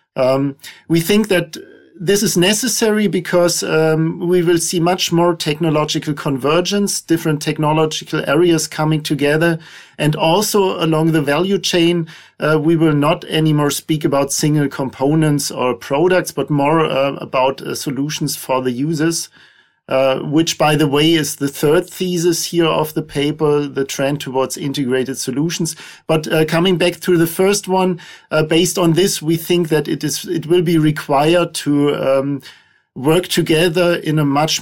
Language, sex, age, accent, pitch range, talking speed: English, male, 40-59, German, 145-175 Hz, 160 wpm